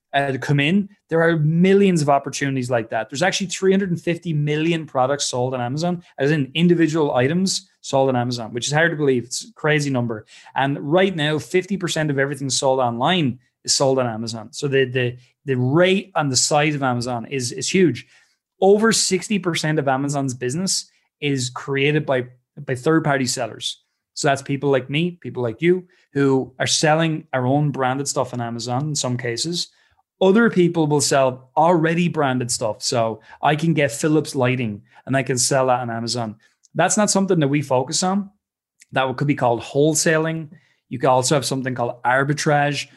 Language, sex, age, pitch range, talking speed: English, male, 20-39, 125-160 Hz, 180 wpm